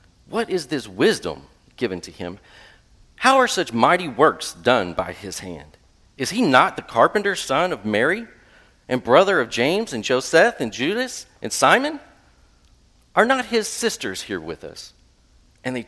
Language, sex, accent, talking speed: English, male, American, 165 wpm